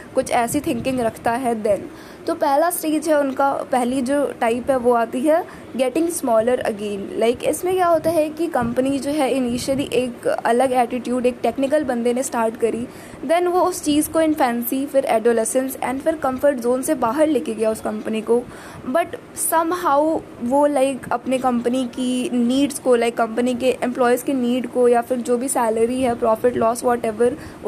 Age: 20-39